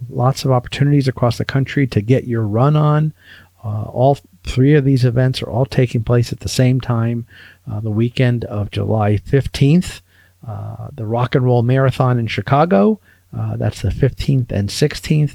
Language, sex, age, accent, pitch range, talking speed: English, male, 50-69, American, 105-130 Hz, 175 wpm